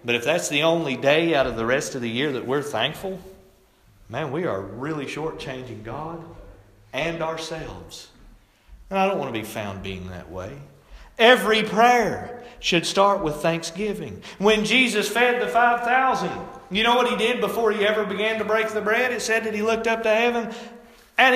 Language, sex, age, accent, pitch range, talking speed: English, male, 40-59, American, 195-260 Hz, 190 wpm